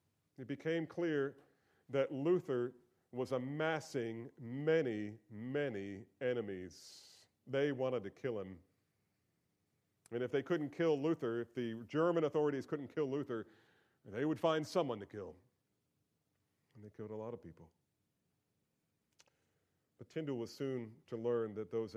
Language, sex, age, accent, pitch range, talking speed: English, male, 40-59, American, 105-140 Hz, 135 wpm